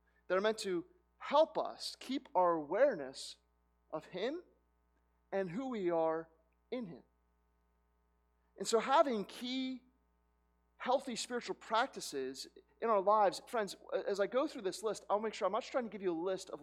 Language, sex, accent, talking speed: English, male, American, 170 wpm